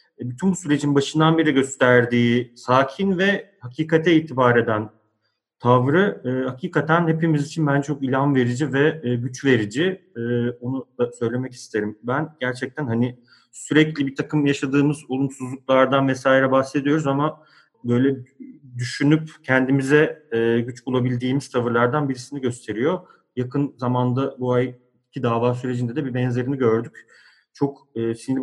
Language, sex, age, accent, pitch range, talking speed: Turkish, male, 30-49, native, 120-145 Hz, 125 wpm